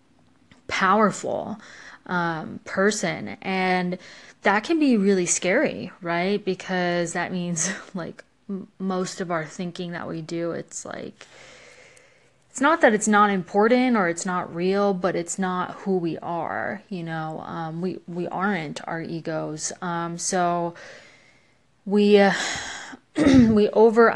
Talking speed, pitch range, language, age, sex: 135 wpm, 170-195 Hz, English, 20-39, female